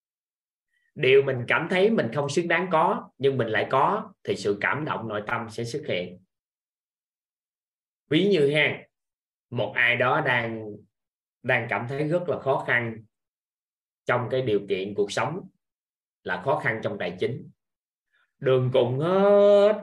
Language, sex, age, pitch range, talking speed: Vietnamese, male, 20-39, 110-160 Hz, 155 wpm